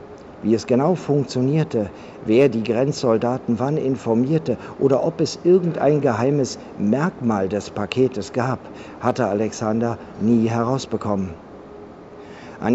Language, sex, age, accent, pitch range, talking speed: German, male, 50-69, German, 115-145 Hz, 110 wpm